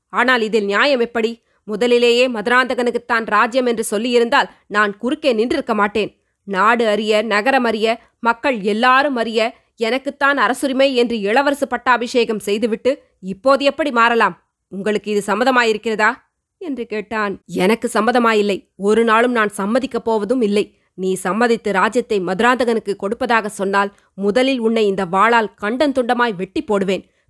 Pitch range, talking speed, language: 210-255 Hz, 120 wpm, Tamil